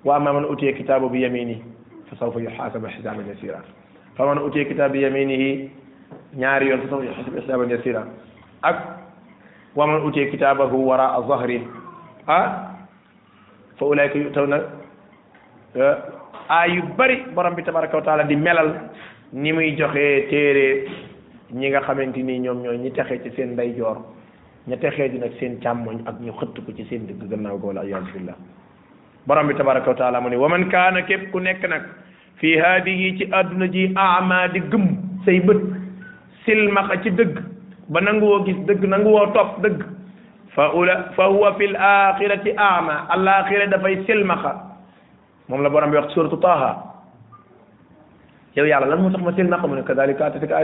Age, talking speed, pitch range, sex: 30-49, 40 wpm, 135-190 Hz, male